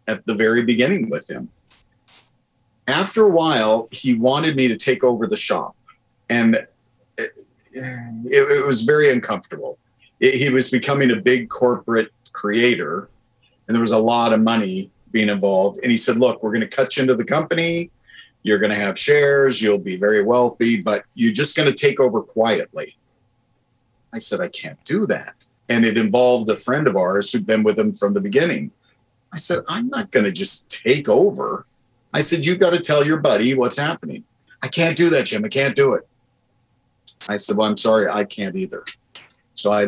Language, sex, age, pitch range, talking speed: English, male, 50-69, 115-145 Hz, 190 wpm